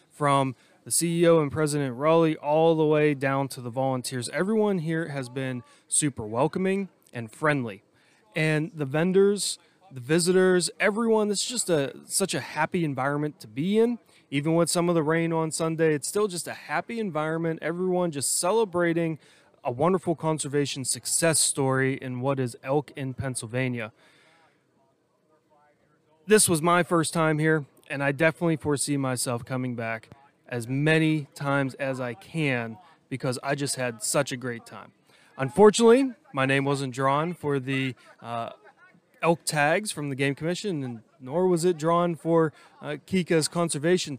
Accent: American